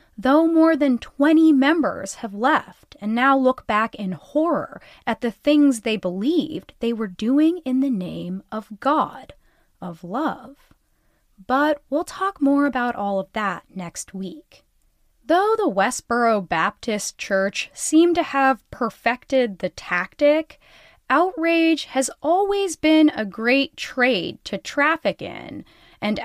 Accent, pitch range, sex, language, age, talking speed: American, 210-310 Hz, female, English, 20-39, 135 wpm